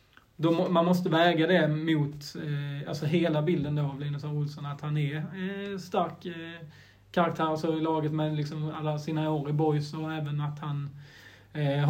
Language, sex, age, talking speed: Swedish, male, 30-49, 180 wpm